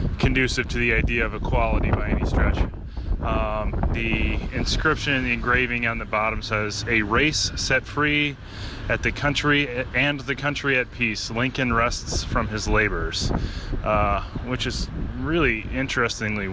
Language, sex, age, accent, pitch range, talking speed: English, male, 20-39, American, 100-125 Hz, 145 wpm